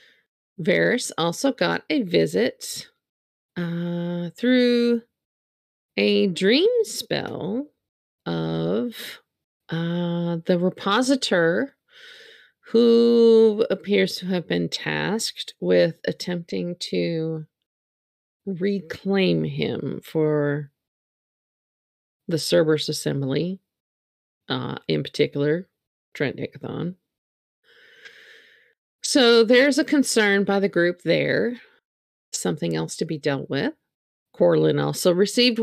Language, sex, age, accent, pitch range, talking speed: English, female, 30-49, American, 155-245 Hz, 85 wpm